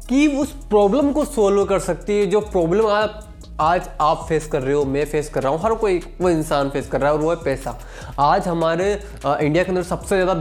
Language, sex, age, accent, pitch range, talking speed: Hindi, male, 20-39, native, 150-205 Hz, 235 wpm